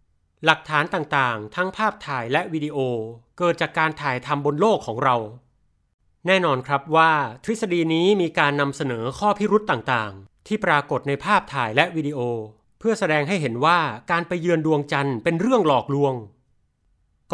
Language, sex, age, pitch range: Thai, male, 30-49, 125-175 Hz